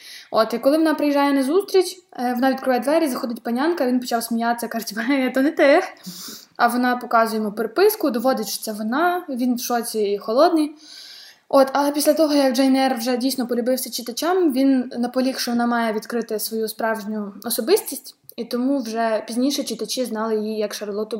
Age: 20-39